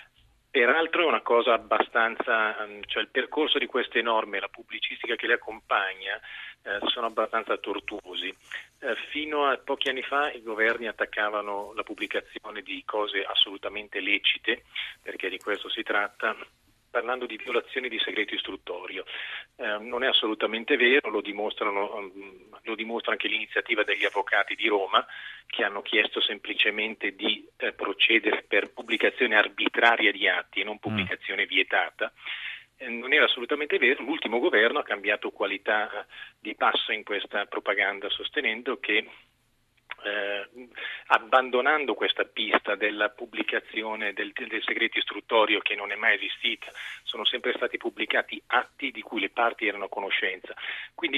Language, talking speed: Italian, 145 wpm